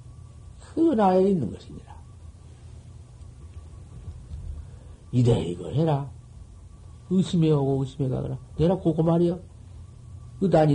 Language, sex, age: Korean, male, 50-69